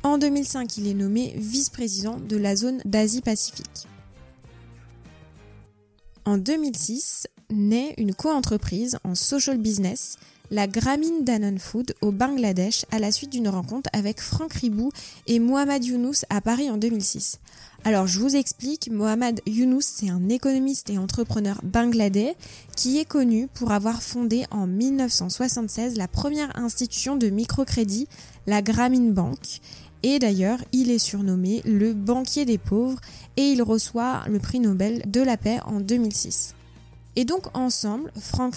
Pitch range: 205-255 Hz